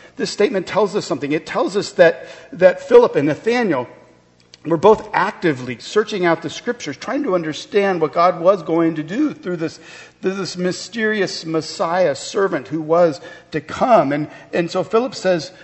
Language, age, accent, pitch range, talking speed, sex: English, 50-69, American, 160-205 Hz, 170 wpm, male